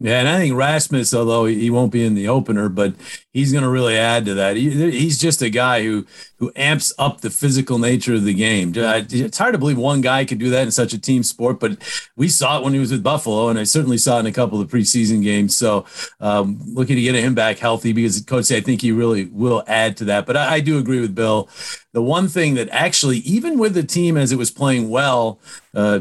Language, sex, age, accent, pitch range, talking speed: English, male, 40-59, American, 115-145 Hz, 255 wpm